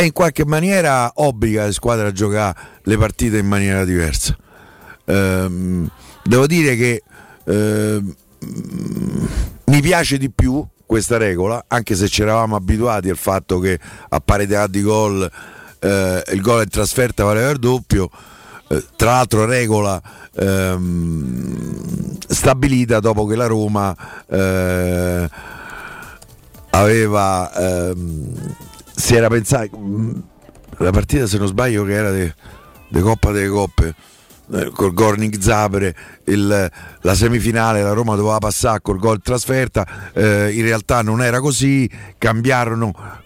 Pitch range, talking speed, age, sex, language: 95-120 Hz, 125 wpm, 50-69, male, Italian